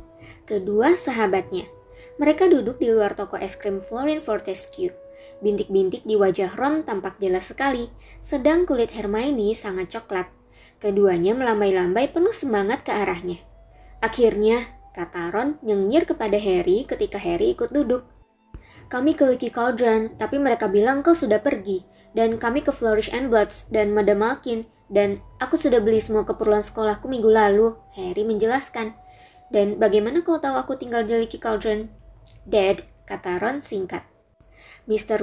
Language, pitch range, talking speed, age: Indonesian, 200-275 Hz, 140 wpm, 20-39